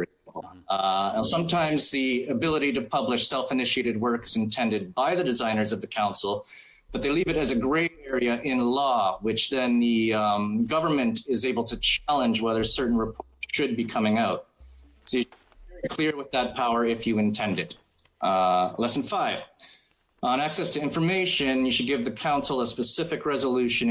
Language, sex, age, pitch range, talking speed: English, male, 30-49, 110-140 Hz, 175 wpm